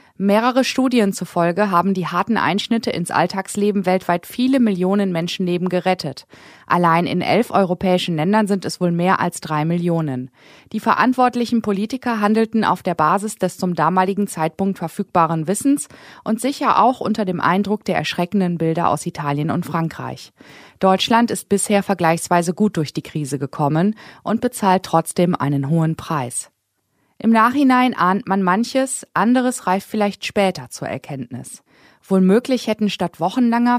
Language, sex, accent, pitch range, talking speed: German, female, German, 170-225 Hz, 145 wpm